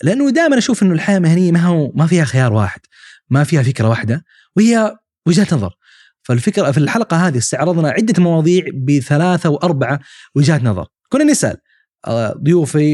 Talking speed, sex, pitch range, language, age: 155 wpm, male, 130-180 Hz, Arabic, 20-39